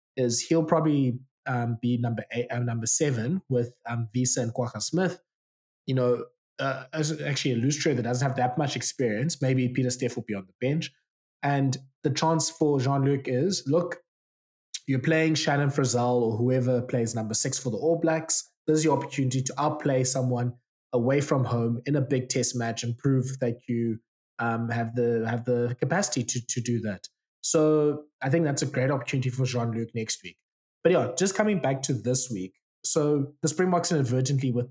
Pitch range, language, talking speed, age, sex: 120-150 Hz, English, 195 wpm, 20-39, male